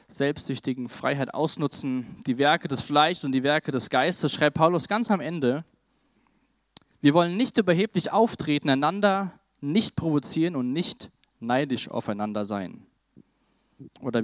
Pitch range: 125-155 Hz